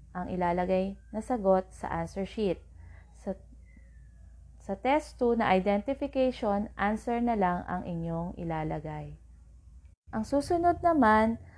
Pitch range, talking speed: 160-235 Hz, 115 wpm